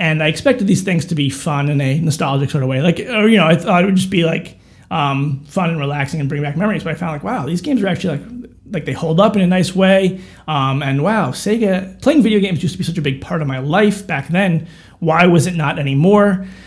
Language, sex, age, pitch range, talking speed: English, male, 30-49, 140-180 Hz, 265 wpm